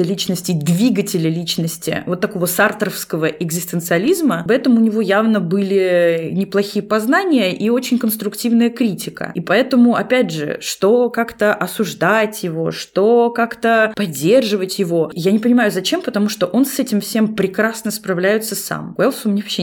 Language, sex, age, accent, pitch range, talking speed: Russian, female, 20-39, native, 175-220 Hz, 145 wpm